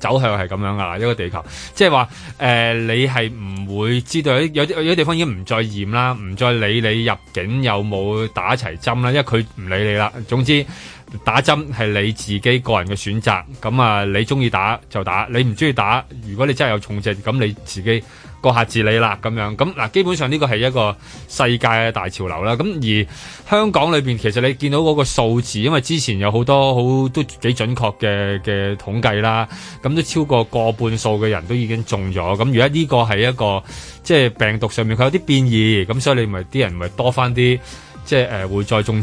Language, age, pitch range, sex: Chinese, 20-39, 105-130 Hz, male